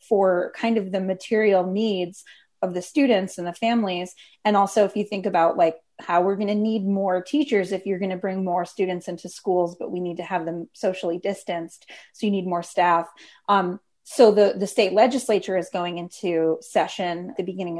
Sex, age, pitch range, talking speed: female, 30-49, 175-200 Hz, 205 wpm